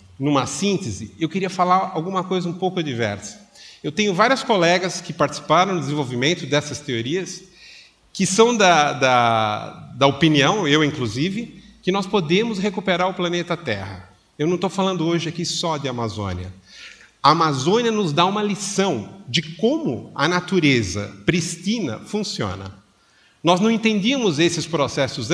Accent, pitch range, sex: Brazilian, 135-195 Hz, male